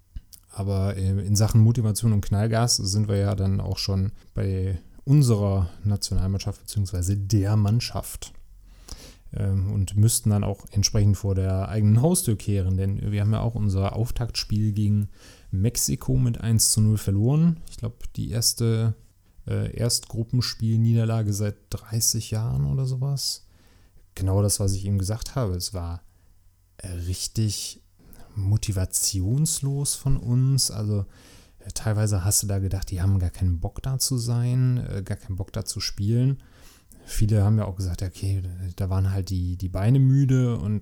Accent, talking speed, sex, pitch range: German, 150 wpm, male, 95-115 Hz